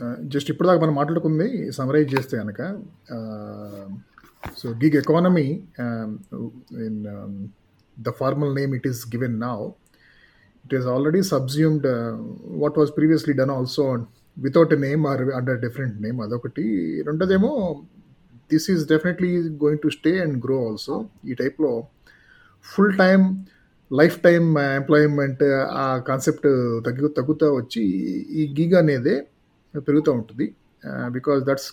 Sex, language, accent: male, Telugu, native